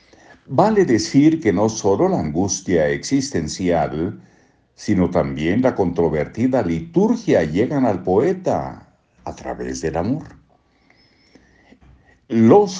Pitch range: 80-120 Hz